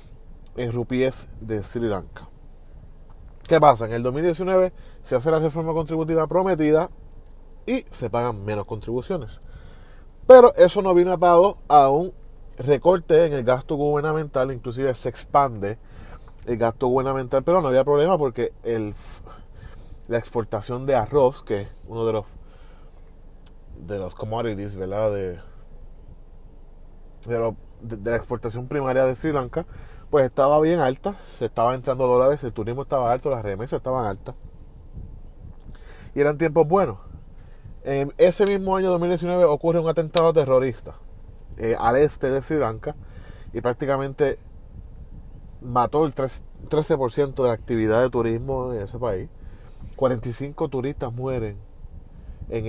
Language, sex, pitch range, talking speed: Spanish, male, 110-150 Hz, 140 wpm